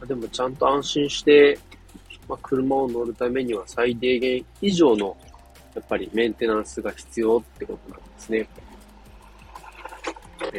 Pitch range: 95-125 Hz